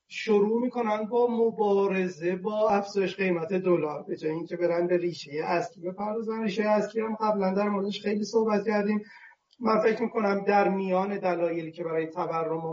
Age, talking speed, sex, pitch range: 30-49, 165 wpm, male, 175-220 Hz